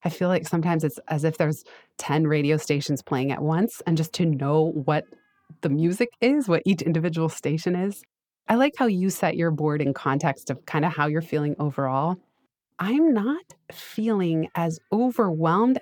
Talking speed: 180 wpm